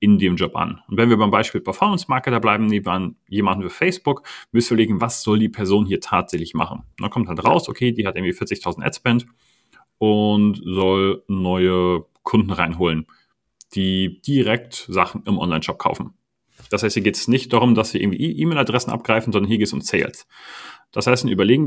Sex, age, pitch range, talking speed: male, 30-49, 105-130 Hz, 190 wpm